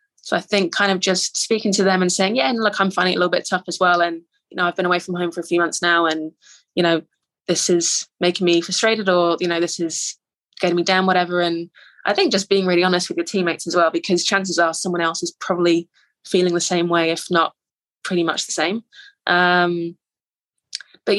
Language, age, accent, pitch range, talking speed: English, 20-39, British, 170-185 Hz, 240 wpm